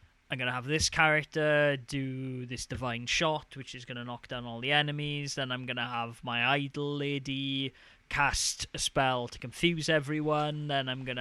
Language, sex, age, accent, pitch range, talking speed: English, male, 20-39, British, 120-150 Hz, 195 wpm